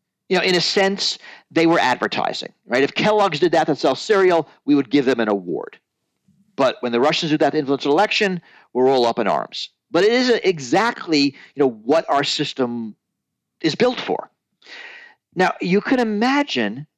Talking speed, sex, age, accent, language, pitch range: 185 wpm, male, 50-69, American, English, 130-205 Hz